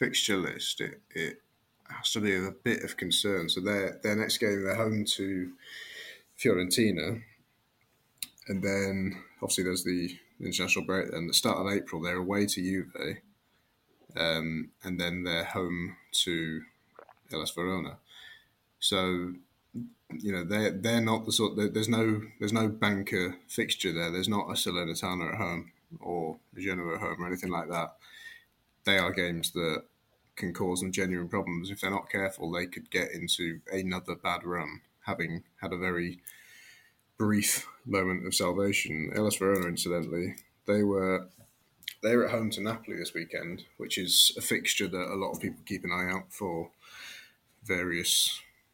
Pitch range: 90-105 Hz